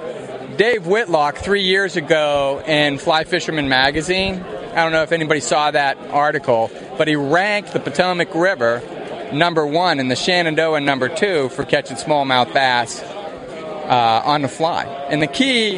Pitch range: 145-180 Hz